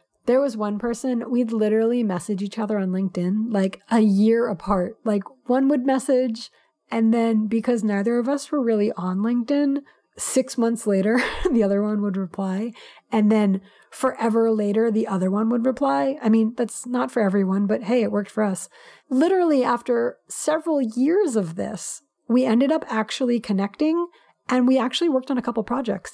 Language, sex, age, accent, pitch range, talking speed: English, female, 30-49, American, 200-245 Hz, 175 wpm